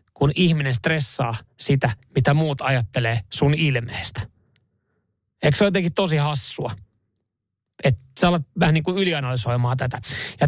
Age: 20-39